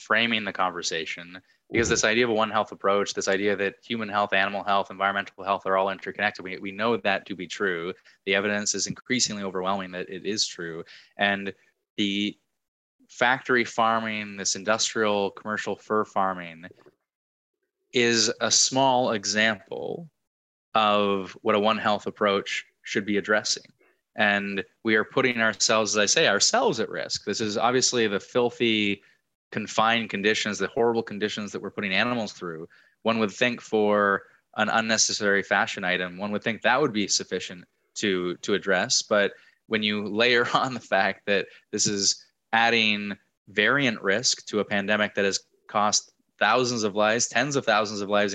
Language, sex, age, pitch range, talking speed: English, male, 20-39, 100-115 Hz, 165 wpm